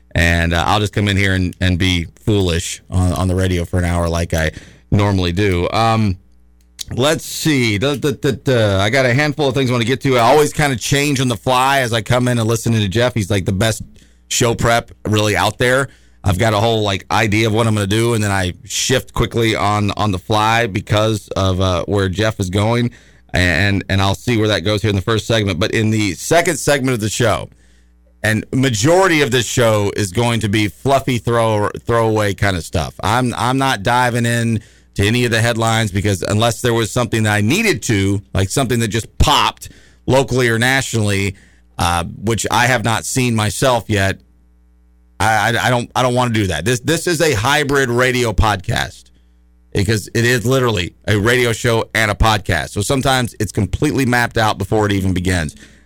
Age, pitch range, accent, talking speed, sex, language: 30-49, 95-120 Hz, American, 215 wpm, male, English